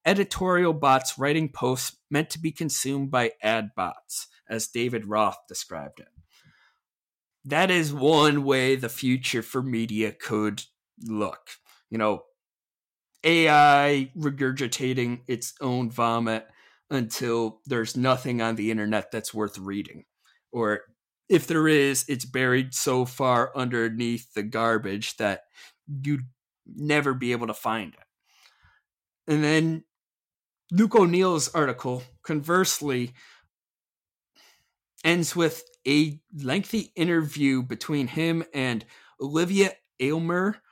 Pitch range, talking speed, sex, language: 120-155 Hz, 115 wpm, male, English